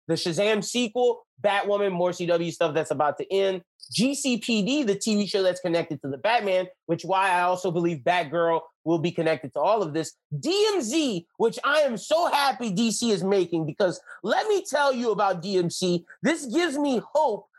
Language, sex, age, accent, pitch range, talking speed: English, male, 30-49, American, 180-230 Hz, 180 wpm